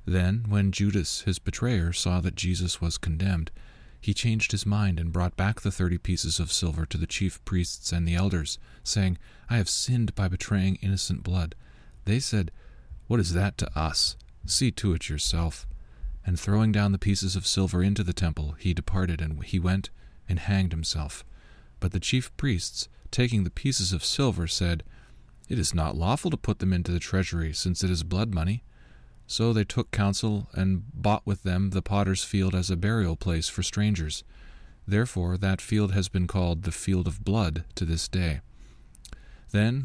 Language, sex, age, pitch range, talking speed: English, male, 40-59, 85-105 Hz, 185 wpm